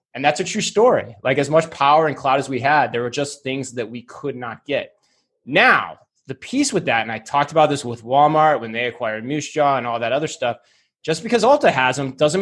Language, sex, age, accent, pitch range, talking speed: English, male, 20-39, American, 120-155 Hz, 245 wpm